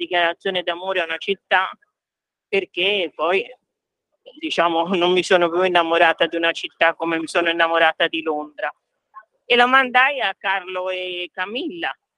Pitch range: 180-230 Hz